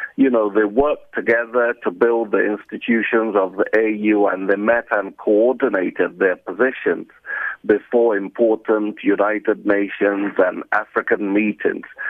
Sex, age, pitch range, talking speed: male, 50-69, 105-145 Hz, 130 wpm